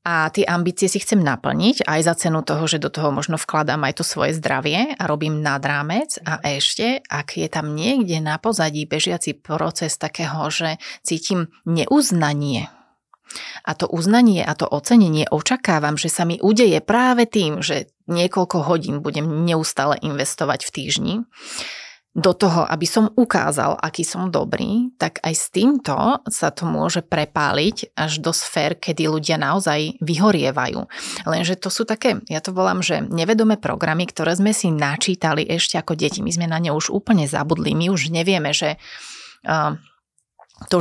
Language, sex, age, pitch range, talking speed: Slovak, female, 30-49, 155-185 Hz, 160 wpm